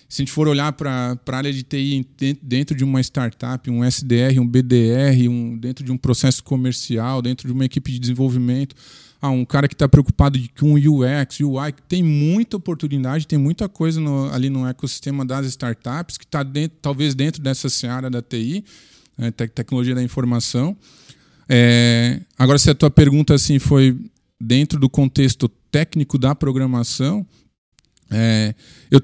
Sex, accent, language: male, Brazilian, Portuguese